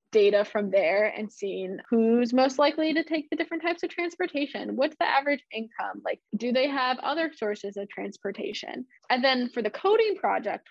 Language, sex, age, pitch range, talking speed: English, female, 10-29, 205-235 Hz, 185 wpm